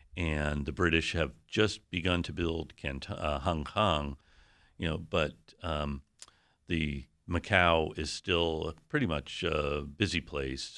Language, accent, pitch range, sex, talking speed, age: English, American, 75-90 Hz, male, 140 wpm, 50-69